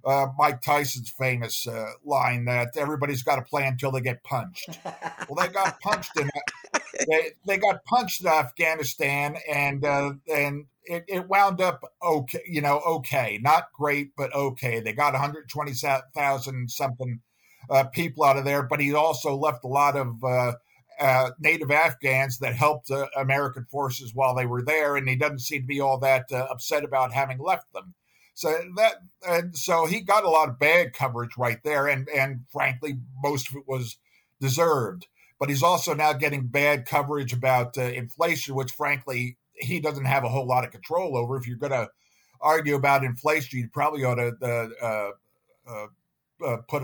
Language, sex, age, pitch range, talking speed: English, male, 50-69, 130-150 Hz, 180 wpm